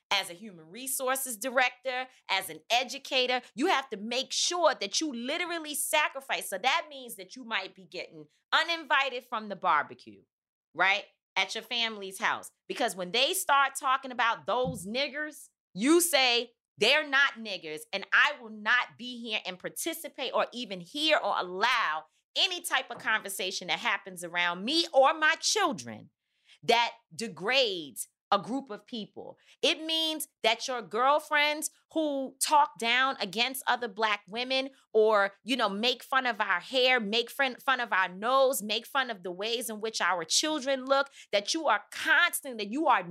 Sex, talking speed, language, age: female, 165 wpm, English, 30-49